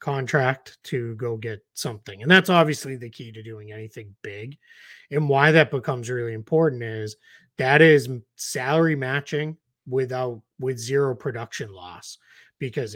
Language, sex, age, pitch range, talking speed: English, male, 30-49, 120-155 Hz, 145 wpm